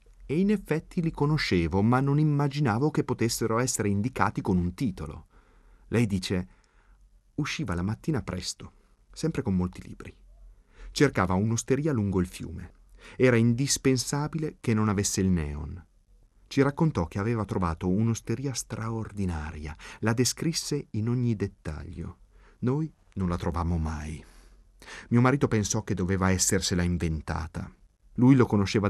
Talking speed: 135 wpm